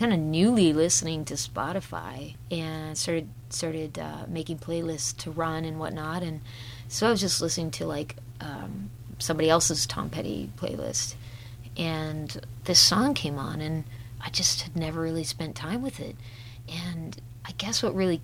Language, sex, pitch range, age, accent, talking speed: English, female, 120-180 Hz, 30-49, American, 165 wpm